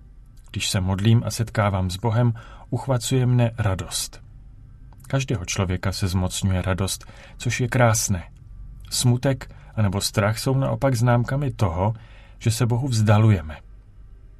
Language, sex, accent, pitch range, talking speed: Czech, male, native, 100-120 Hz, 120 wpm